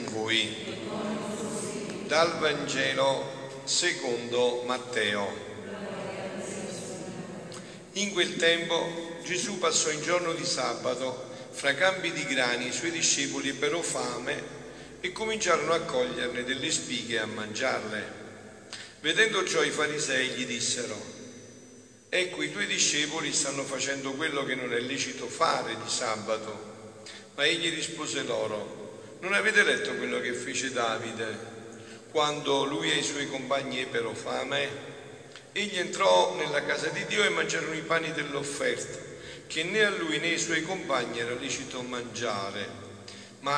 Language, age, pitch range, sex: Italian, 50-69, 120-170 Hz, male